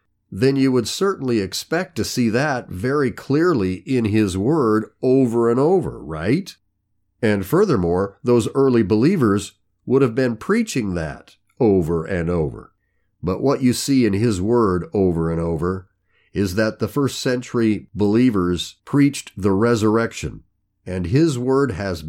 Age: 50-69